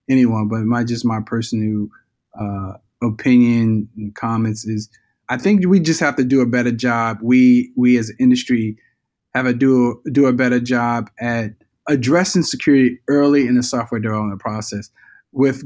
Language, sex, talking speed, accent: English, male, 165 wpm, American